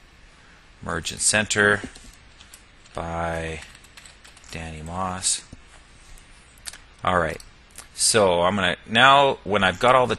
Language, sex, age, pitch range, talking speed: English, male, 40-59, 85-105 Hz, 100 wpm